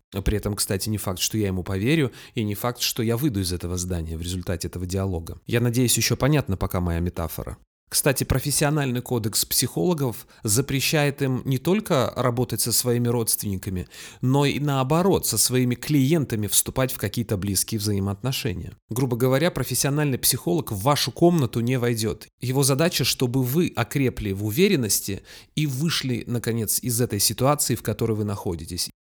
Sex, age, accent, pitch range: male, 30-49, native, 105-130 Hz